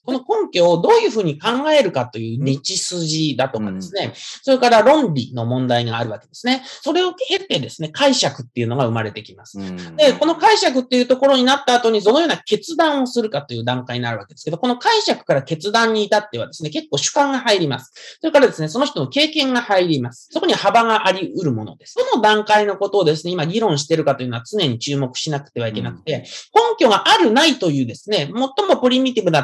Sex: male